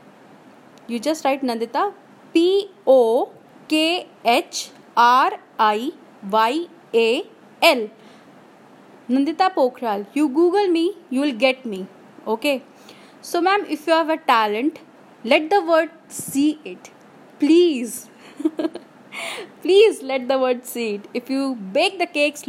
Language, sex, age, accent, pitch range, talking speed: Hindi, female, 20-39, native, 245-325 Hz, 125 wpm